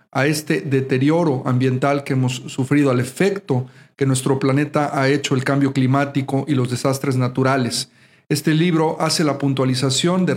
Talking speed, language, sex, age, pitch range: 155 wpm, Spanish, male, 40-59, 135-155 Hz